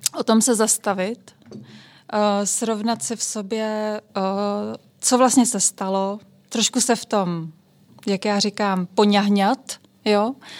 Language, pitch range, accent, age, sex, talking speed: Czech, 195-225 Hz, native, 20-39, female, 120 wpm